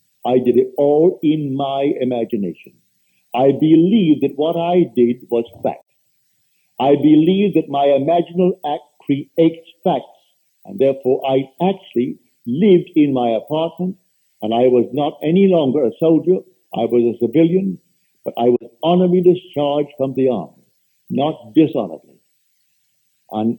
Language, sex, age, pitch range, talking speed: English, male, 60-79, 130-175 Hz, 135 wpm